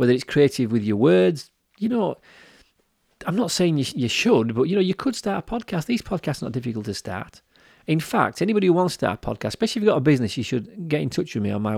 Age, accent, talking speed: 40-59, British, 275 wpm